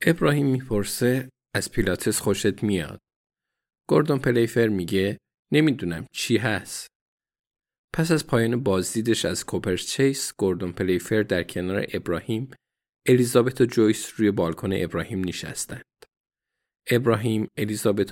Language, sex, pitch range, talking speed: Persian, male, 95-125 Hz, 105 wpm